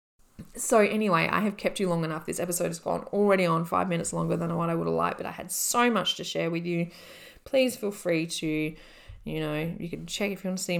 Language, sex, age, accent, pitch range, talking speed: English, female, 20-39, Australian, 155-190 Hz, 255 wpm